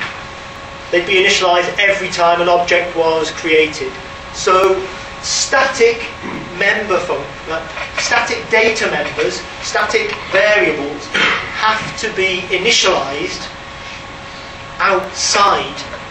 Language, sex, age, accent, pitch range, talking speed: English, male, 40-59, British, 165-195 Hz, 85 wpm